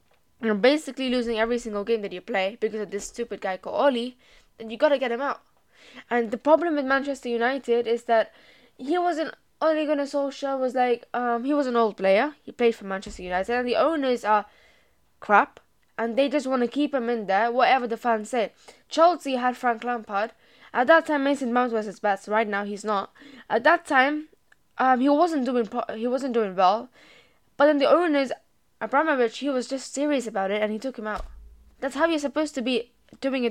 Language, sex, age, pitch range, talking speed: English, female, 10-29, 215-275 Hz, 210 wpm